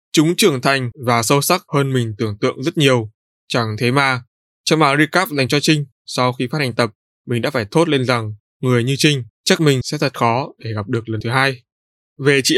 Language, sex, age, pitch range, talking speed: Vietnamese, male, 20-39, 120-150 Hz, 230 wpm